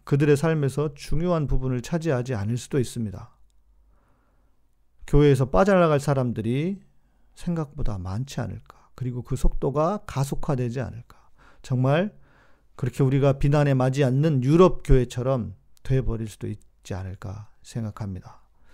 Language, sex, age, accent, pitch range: Korean, male, 40-59, native, 110-145 Hz